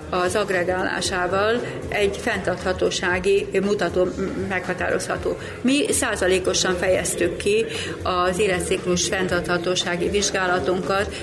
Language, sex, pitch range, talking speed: Hungarian, female, 175-205 Hz, 75 wpm